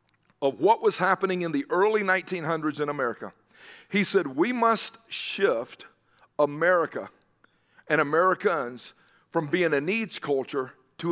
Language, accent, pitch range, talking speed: English, American, 165-210 Hz, 130 wpm